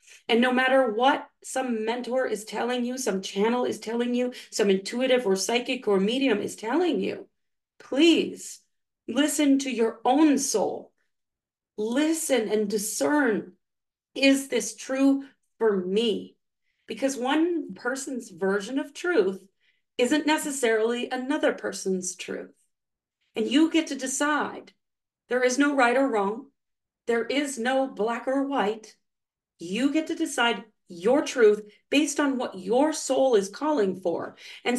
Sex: female